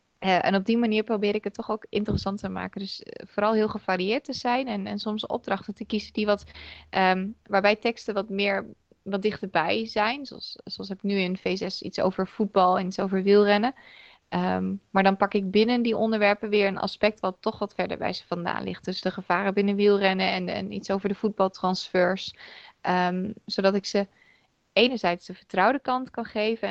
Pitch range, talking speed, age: 180-210 Hz, 200 wpm, 20-39